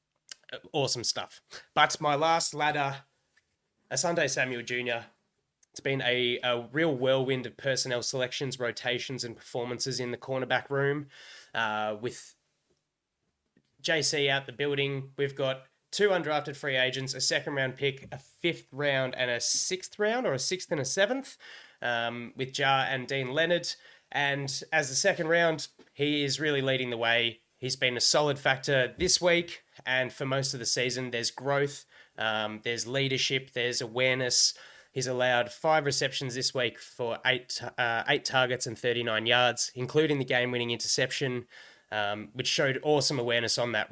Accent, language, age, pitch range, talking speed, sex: Australian, English, 20-39, 120-140 Hz, 160 wpm, male